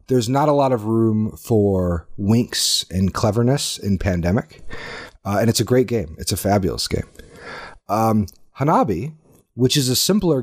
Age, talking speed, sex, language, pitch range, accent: 30-49, 160 wpm, male, English, 90-115 Hz, American